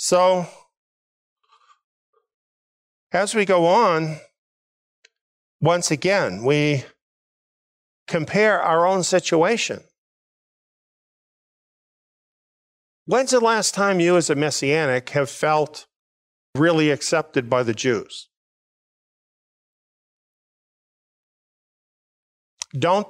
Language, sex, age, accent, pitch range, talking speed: English, male, 50-69, American, 135-170 Hz, 75 wpm